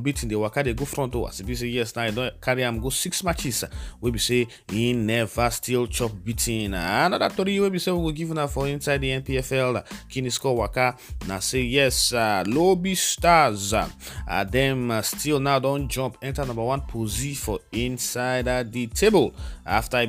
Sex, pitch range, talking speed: male, 110-140 Hz, 200 wpm